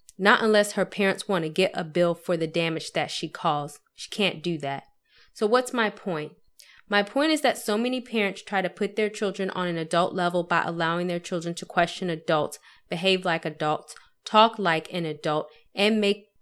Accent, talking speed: American, 200 wpm